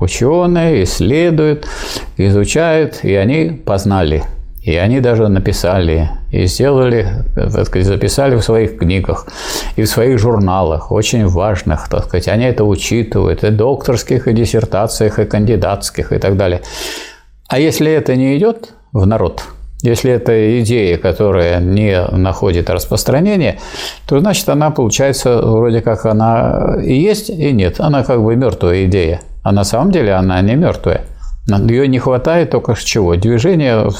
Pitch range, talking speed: 95-130 Hz, 145 wpm